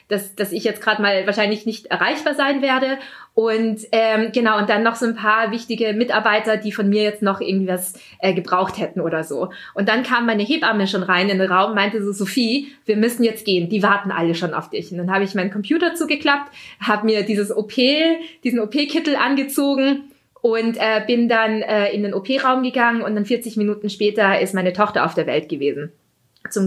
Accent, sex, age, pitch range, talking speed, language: German, female, 20-39, 195-235 Hz, 210 wpm, German